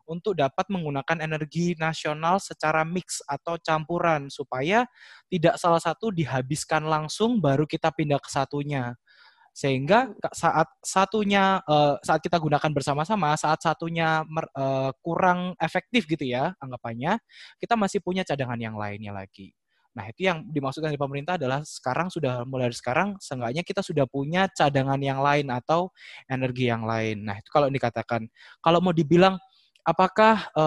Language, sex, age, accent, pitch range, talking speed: Indonesian, male, 20-39, native, 140-180 Hz, 140 wpm